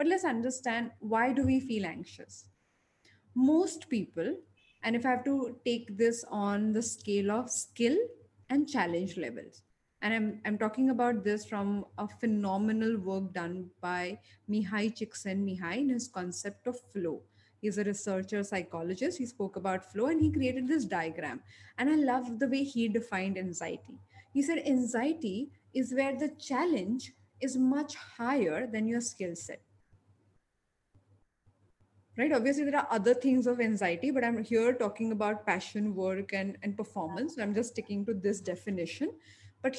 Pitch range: 195-265 Hz